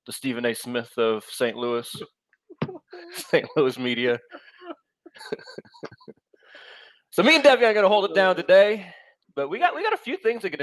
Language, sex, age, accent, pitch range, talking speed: English, male, 20-39, American, 130-195 Hz, 175 wpm